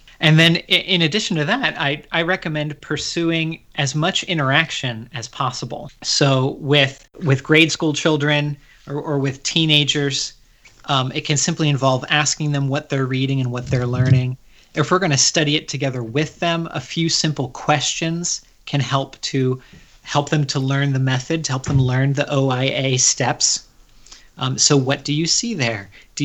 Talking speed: 170 wpm